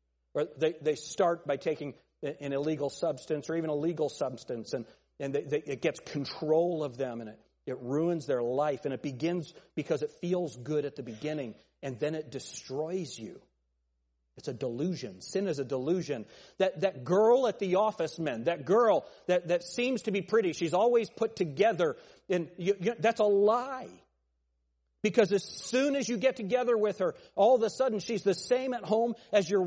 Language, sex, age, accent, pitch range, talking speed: English, male, 40-59, American, 150-225 Hz, 195 wpm